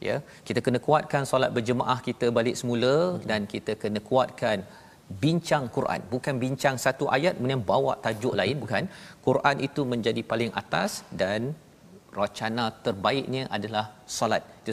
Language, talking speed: Malayalam, 145 wpm